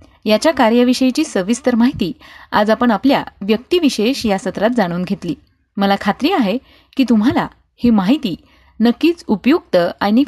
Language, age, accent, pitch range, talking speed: Marathi, 20-39, native, 200-285 Hz, 130 wpm